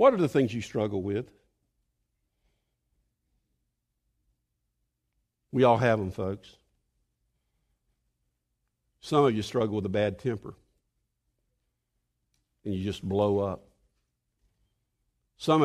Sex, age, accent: male, 50-69, American